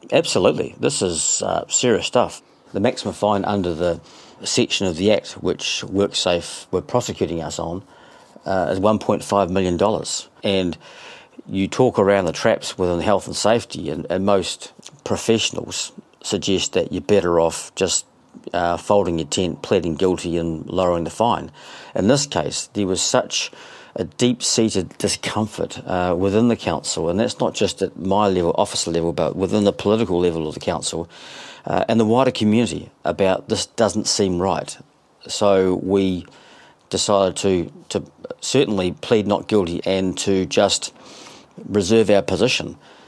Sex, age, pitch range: male, 40-59, 90-105 Hz